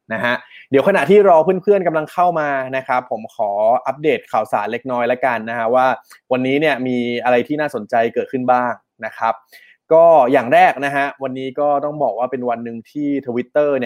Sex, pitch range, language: male, 120-145 Hz, Thai